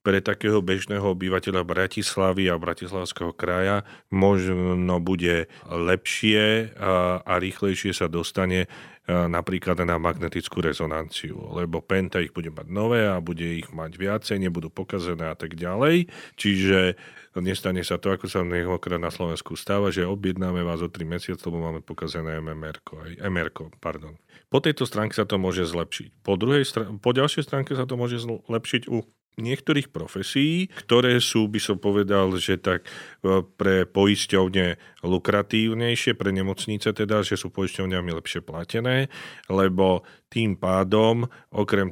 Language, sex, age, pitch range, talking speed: Slovak, male, 40-59, 90-105 Hz, 140 wpm